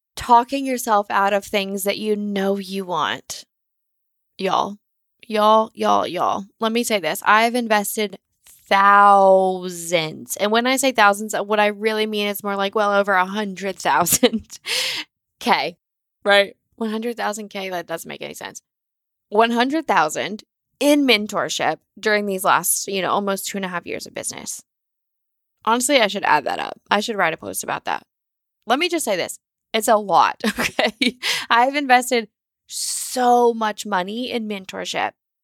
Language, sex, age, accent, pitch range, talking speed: English, female, 20-39, American, 195-235 Hz, 165 wpm